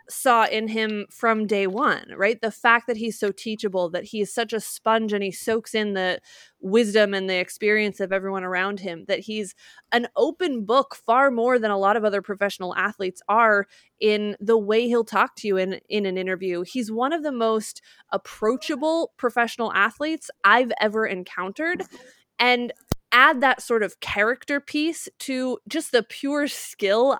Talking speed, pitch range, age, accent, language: 180 wpm, 200-255 Hz, 20-39, American, English